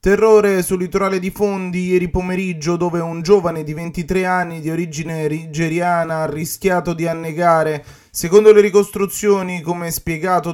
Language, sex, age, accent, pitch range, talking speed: Italian, male, 20-39, native, 160-190 Hz, 140 wpm